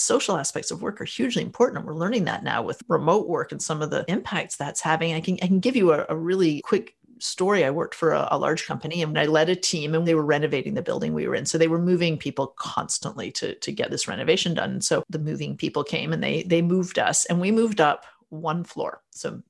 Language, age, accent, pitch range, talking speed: English, 40-59, American, 170-235 Hz, 255 wpm